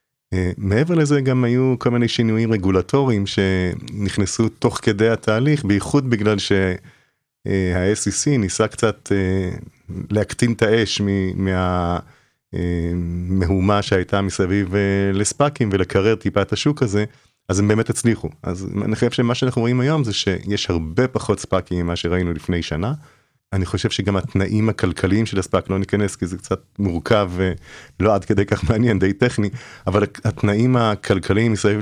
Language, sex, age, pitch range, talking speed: Hebrew, male, 30-49, 95-115 Hz, 145 wpm